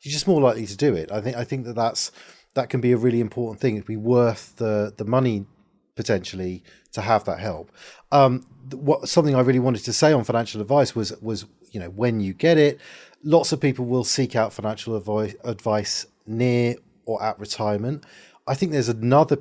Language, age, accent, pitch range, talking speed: English, 40-59, British, 105-135 Hz, 205 wpm